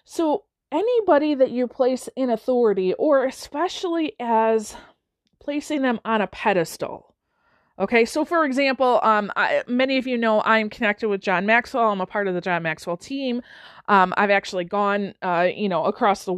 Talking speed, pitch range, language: 170 wpm, 200-260 Hz, English